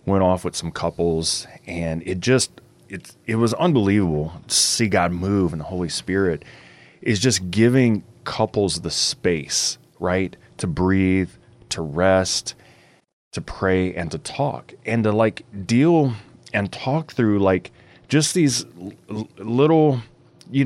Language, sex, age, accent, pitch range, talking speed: English, male, 30-49, American, 95-120 Hz, 140 wpm